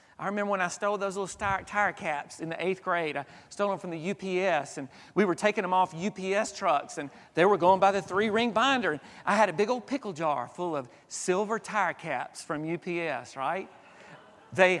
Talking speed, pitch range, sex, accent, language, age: 210 wpm, 175-230 Hz, male, American, English, 40-59